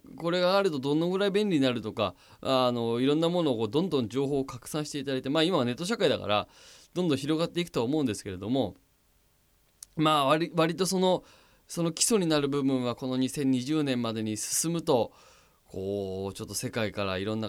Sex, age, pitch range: male, 20-39, 105-155 Hz